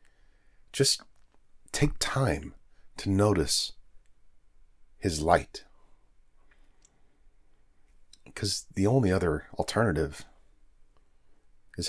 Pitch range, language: 75-110 Hz, English